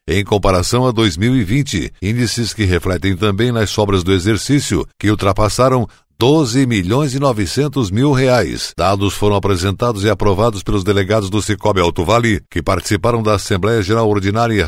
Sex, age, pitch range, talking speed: male, 60-79, 95-120 Hz, 150 wpm